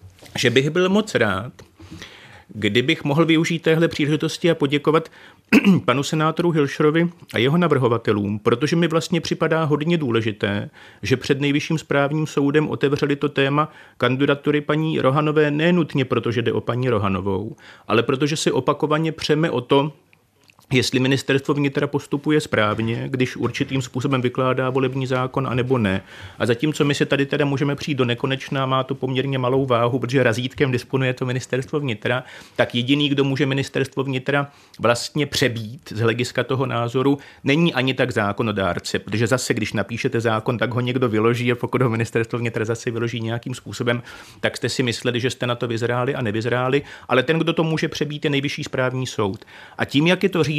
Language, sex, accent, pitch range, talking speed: Czech, male, native, 120-150 Hz, 170 wpm